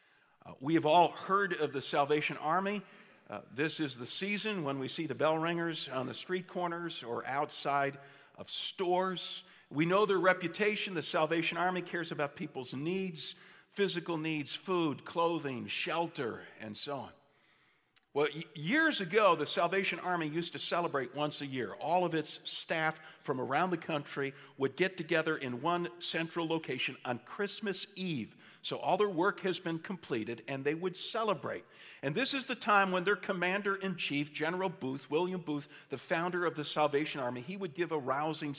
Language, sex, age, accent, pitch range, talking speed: English, male, 50-69, American, 140-180 Hz, 170 wpm